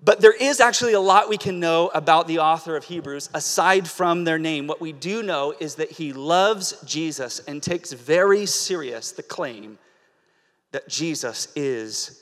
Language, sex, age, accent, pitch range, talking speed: English, male, 30-49, American, 165-220 Hz, 175 wpm